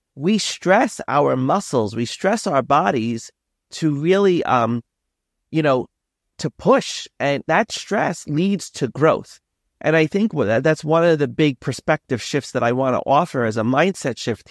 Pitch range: 115-155 Hz